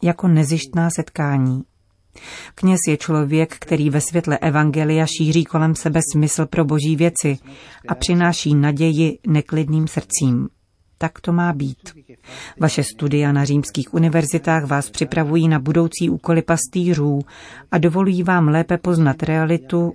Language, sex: Czech, female